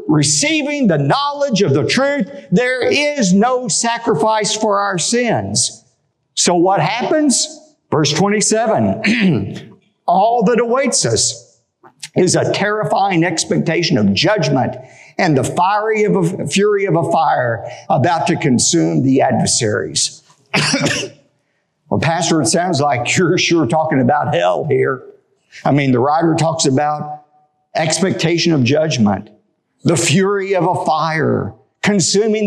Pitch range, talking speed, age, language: 150-205 Hz, 125 wpm, 50-69, English